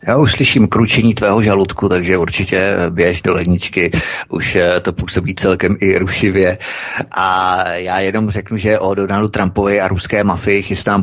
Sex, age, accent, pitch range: male, 30-49, native, 90-105 Hz